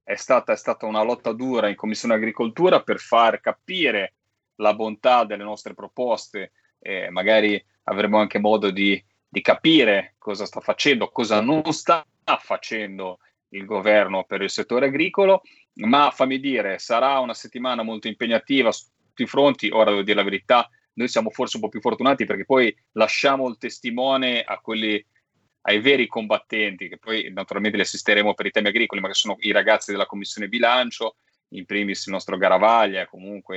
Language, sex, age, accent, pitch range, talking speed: Italian, male, 30-49, native, 100-120 Hz, 170 wpm